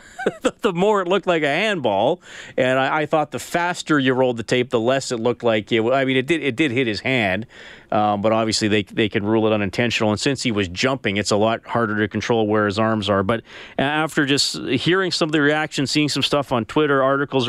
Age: 40-59